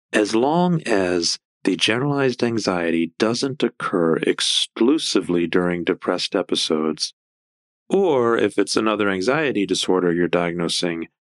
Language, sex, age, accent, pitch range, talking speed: English, male, 40-59, American, 85-105 Hz, 105 wpm